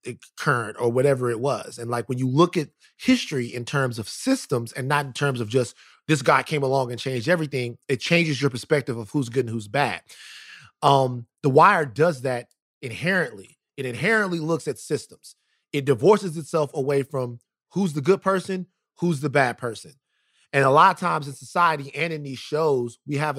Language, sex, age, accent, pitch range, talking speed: English, male, 30-49, American, 130-165 Hz, 195 wpm